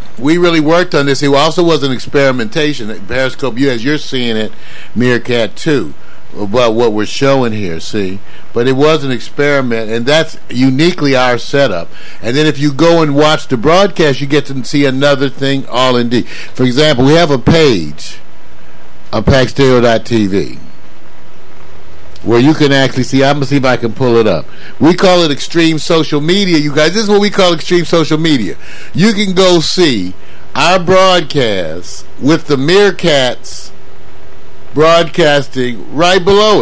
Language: English